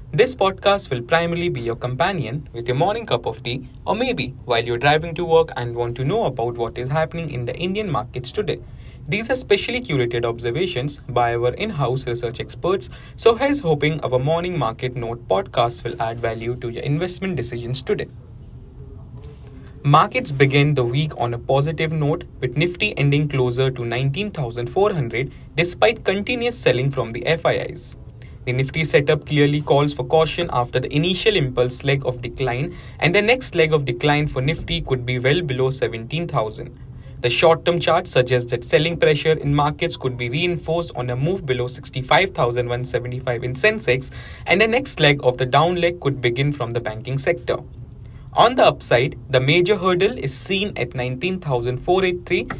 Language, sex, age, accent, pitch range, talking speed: English, male, 20-39, Indian, 125-165 Hz, 170 wpm